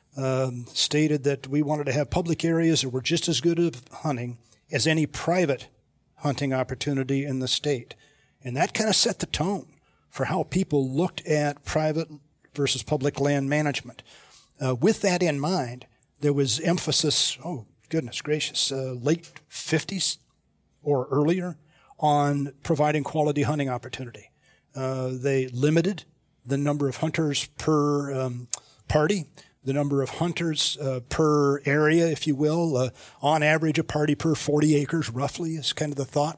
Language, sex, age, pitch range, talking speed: English, male, 50-69, 140-160 Hz, 160 wpm